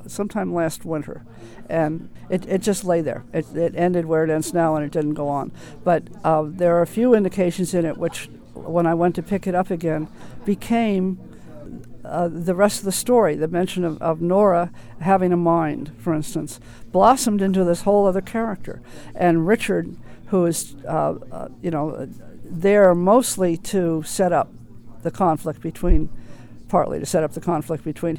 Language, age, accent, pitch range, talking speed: English, 50-69, American, 160-185 Hz, 180 wpm